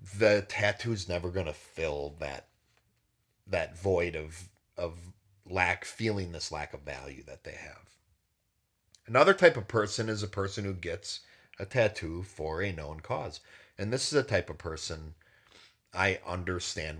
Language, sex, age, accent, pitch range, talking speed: English, male, 40-59, American, 80-105 Hz, 160 wpm